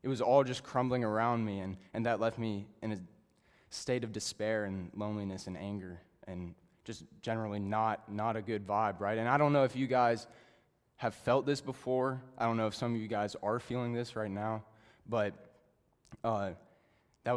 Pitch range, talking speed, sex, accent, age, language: 110-155 Hz, 195 wpm, male, American, 20-39, English